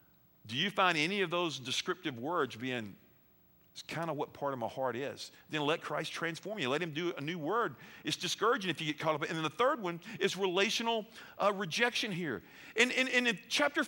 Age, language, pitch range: 50-69, English, 145-225 Hz